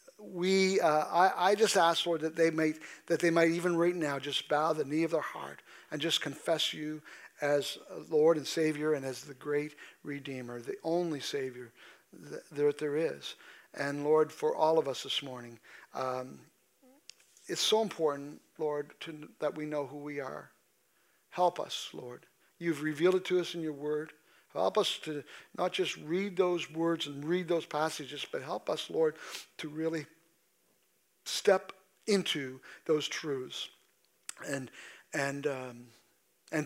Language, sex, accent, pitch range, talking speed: English, male, American, 145-175 Hz, 160 wpm